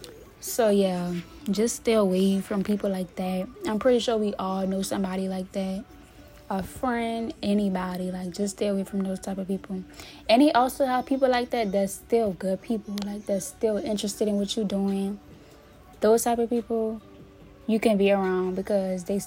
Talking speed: 185 wpm